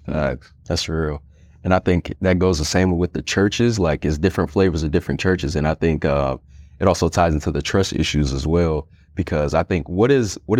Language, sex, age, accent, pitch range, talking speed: English, male, 30-49, American, 85-115 Hz, 220 wpm